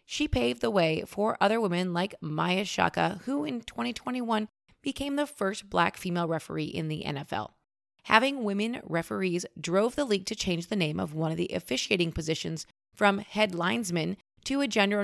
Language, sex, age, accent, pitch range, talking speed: English, female, 30-49, American, 170-220 Hz, 175 wpm